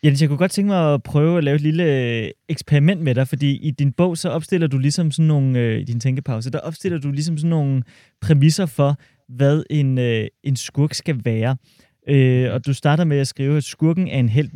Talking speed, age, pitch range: 215 wpm, 20-39, 125-150 Hz